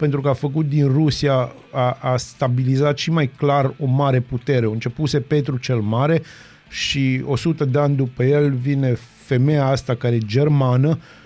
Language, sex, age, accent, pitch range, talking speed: Romanian, male, 30-49, native, 125-150 Hz, 175 wpm